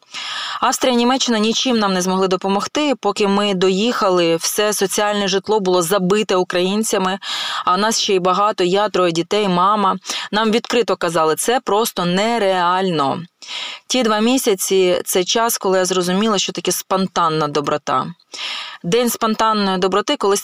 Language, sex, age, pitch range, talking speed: Ukrainian, female, 20-39, 185-225 Hz, 140 wpm